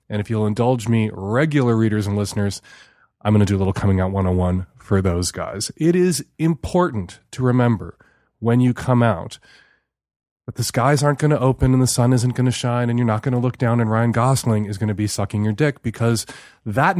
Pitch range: 110-160 Hz